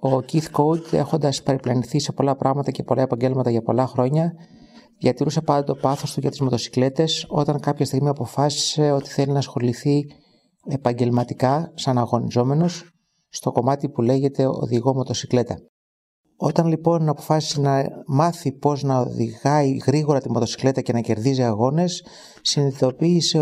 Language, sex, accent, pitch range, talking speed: Greek, male, native, 120-150 Hz, 140 wpm